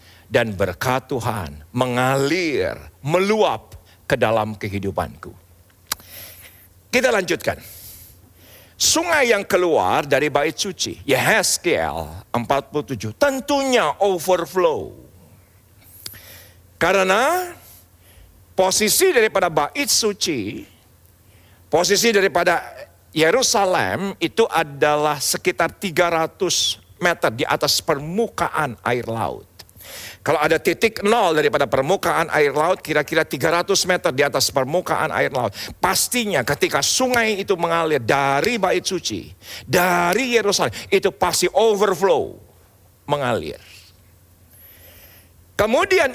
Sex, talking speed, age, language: male, 90 wpm, 50-69, Indonesian